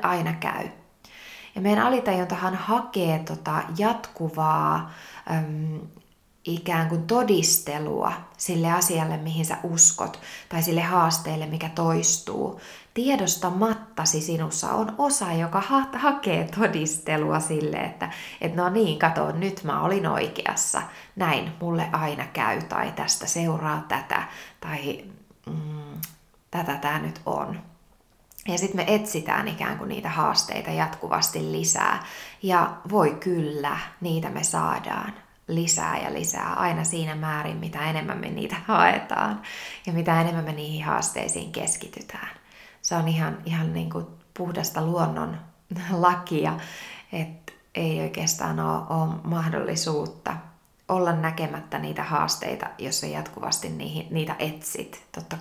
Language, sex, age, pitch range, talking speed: Finnish, female, 20-39, 155-180 Hz, 120 wpm